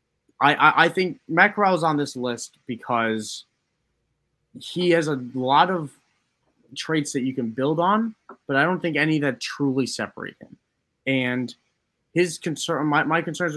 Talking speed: 150 wpm